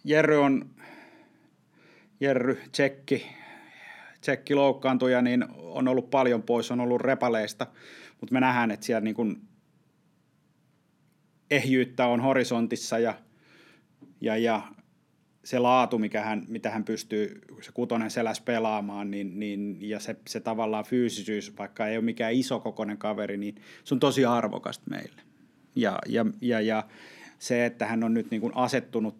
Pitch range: 105-125 Hz